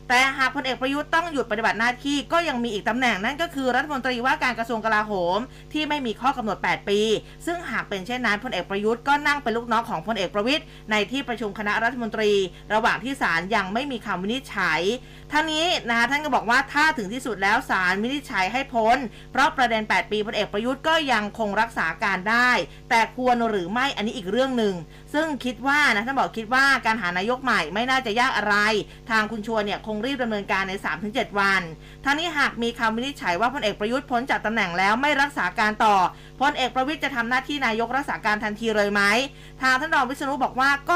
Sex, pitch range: female, 210-265 Hz